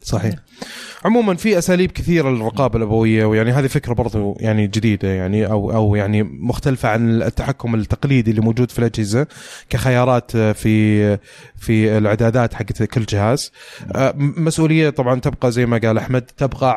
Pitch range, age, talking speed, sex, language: 115-140 Hz, 20-39, 145 wpm, male, Arabic